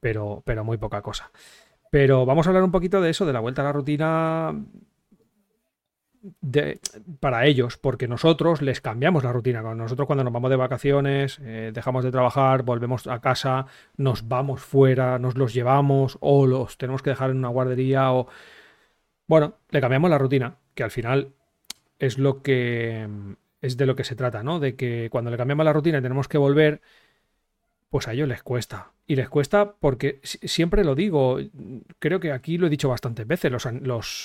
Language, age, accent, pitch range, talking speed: Spanish, 40-59, Spanish, 125-150 Hz, 185 wpm